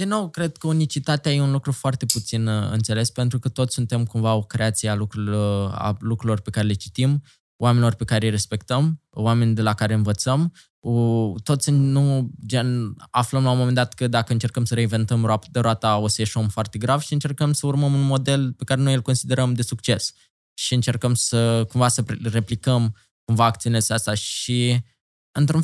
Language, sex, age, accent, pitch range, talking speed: Romanian, male, 20-39, native, 110-140 Hz, 185 wpm